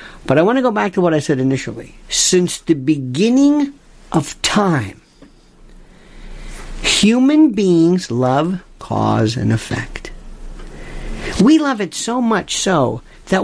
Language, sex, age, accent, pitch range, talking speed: English, male, 50-69, American, 125-185 Hz, 130 wpm